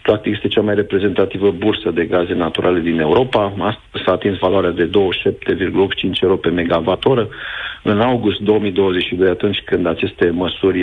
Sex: male